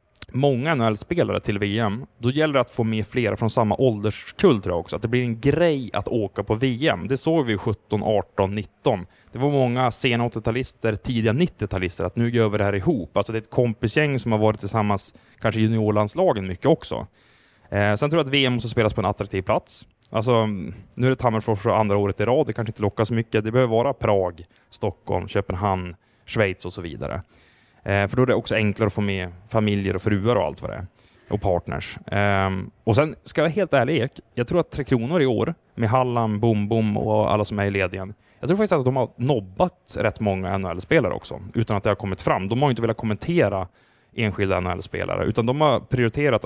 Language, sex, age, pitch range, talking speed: Swedish, male, 20-39, 100-125 Hz, 220 wpm